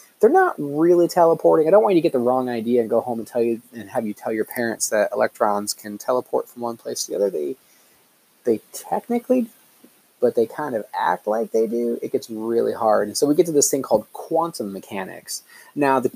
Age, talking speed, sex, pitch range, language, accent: 30-49, 230 wpm, male, 110-175 Hz, English, American